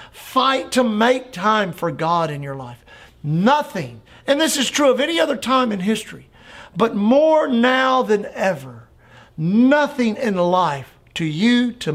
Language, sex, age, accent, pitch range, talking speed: English, male, 50-69, American, 140-195 Hz, 155 wpm